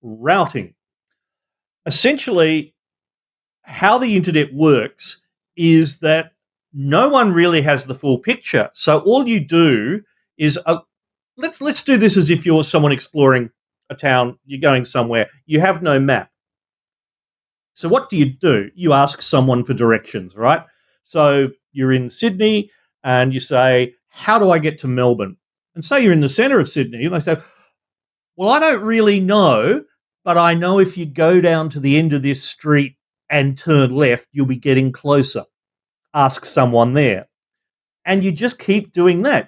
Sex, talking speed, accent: male, 165 wpm, Australian